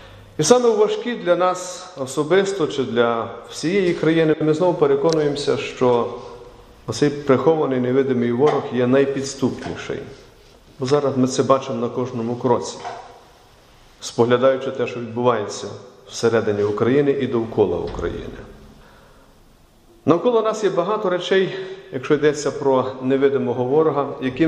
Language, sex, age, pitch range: Ukrainian, male, 40-59, 135-180 Hz